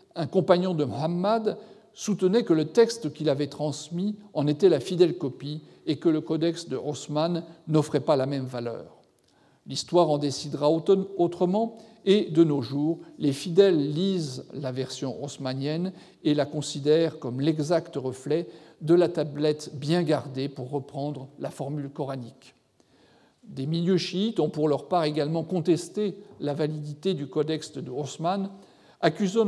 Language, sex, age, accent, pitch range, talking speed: French, male, 50-69, French, 145-180 Hz, 150 wpm